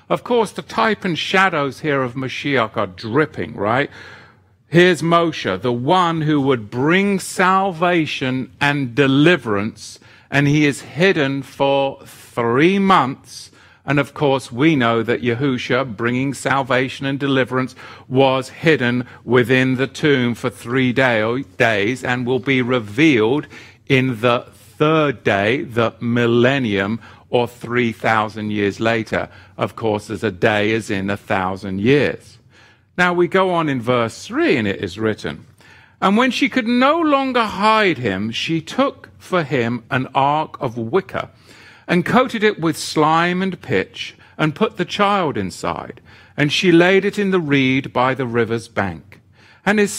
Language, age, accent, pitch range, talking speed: English, 50-69, British, 115-160 Hz, 150 wpm